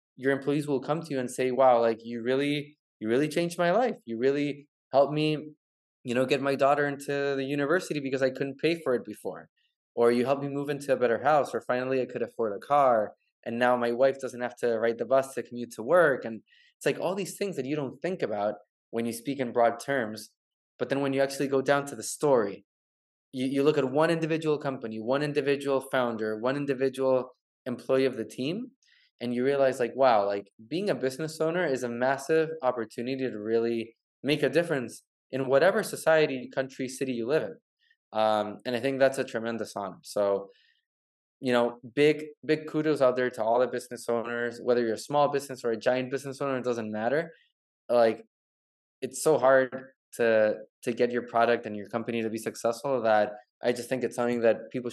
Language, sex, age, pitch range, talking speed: English, male, 20-39, 120-145 Hz, 210 wpm